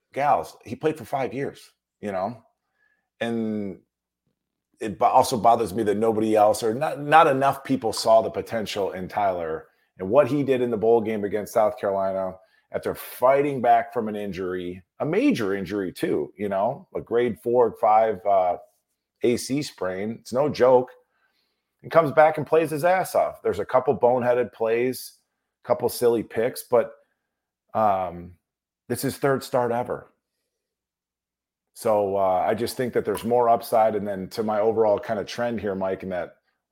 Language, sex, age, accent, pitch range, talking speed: English, male, 40-59, American, 100-130 Hz, 175 wpm